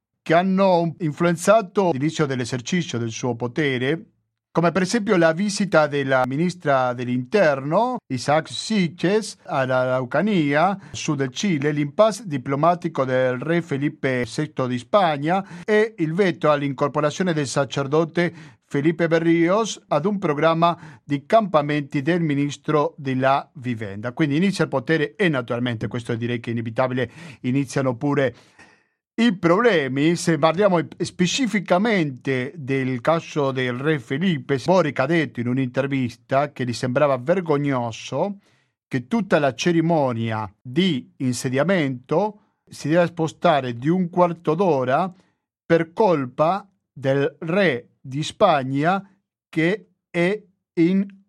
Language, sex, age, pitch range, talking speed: Italian, male, 50-69, 130-175 Hz, 120 wpm